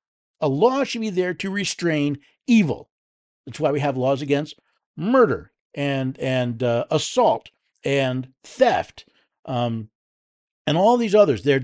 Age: 50-69